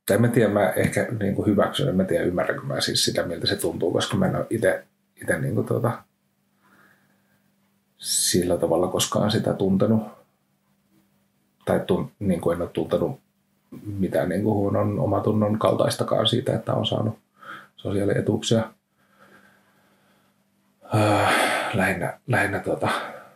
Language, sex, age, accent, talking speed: Finnish, male, 30-49, native, 105 wpm